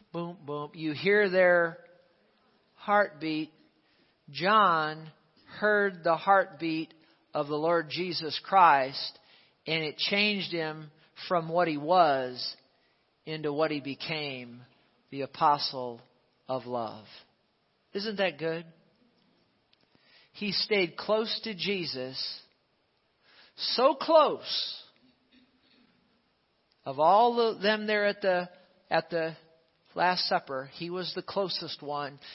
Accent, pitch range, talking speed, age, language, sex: American, 140-190 Hz, 110 wpm, 50-69, English, male